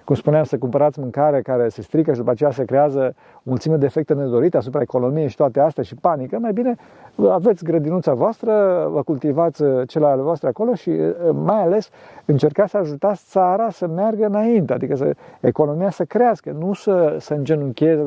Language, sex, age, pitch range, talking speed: Romanian, male, 50-69, 130-190 Hz, 175 wpm